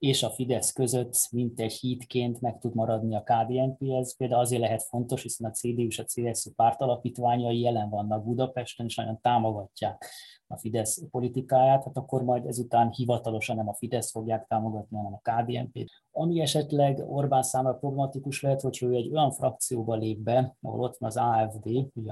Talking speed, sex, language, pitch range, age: 180 wpm, male, Hungarian, 115-125 Hz, 20-39